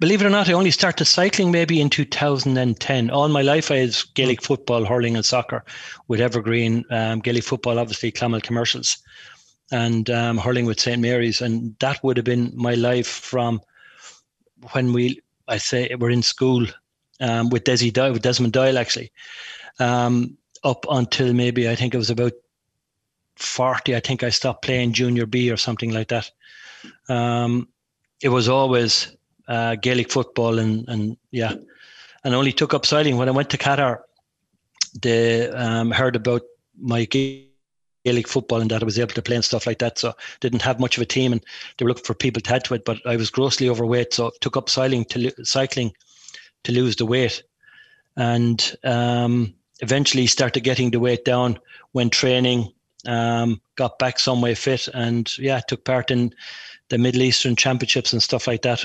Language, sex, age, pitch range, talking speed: English, male, 30-49, 120-130 Hz, 190 wpm